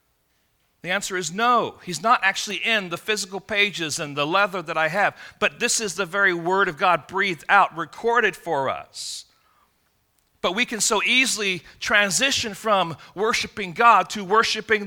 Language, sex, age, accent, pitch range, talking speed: English, male, 40-59, American, 155-215 Hz, 165 wpm